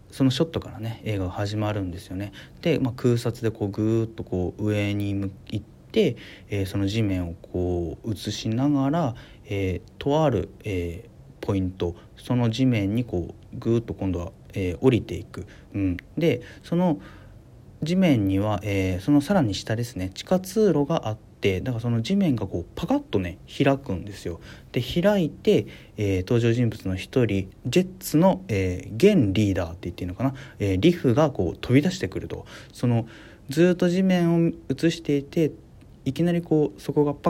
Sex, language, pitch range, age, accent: male, Japanese, 100-145 Hz, 40-59, native